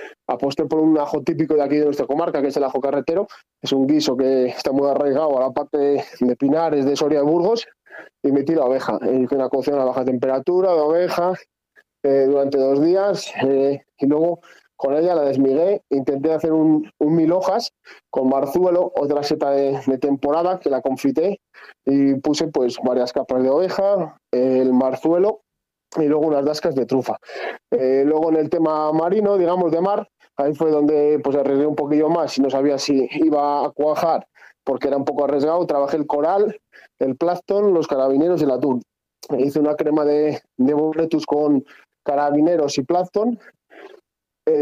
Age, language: 20-39, Spanish